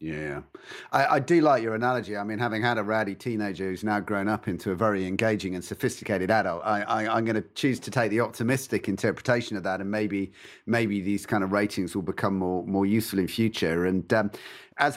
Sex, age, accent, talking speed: male, 40-59, British, 220 wpm